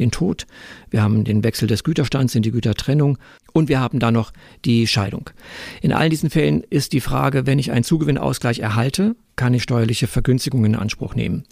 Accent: German